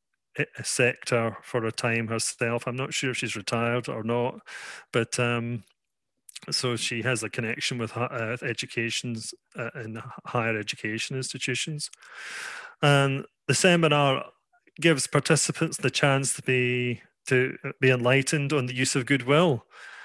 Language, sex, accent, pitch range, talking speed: English, male, British, 120-145 Hz, 140 wpm